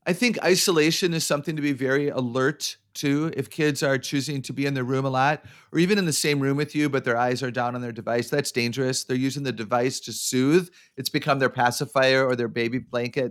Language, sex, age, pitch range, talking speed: English, male, 40-59, 125-155 Hz, 240 wpm